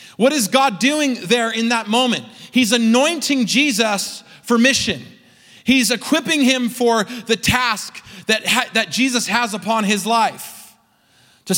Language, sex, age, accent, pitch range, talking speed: English, male, 30-49, American, 205-250 Hz, 145 wpm